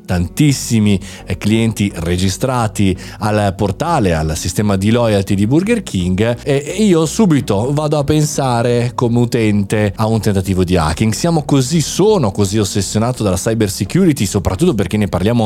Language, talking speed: Italian, 145 wpm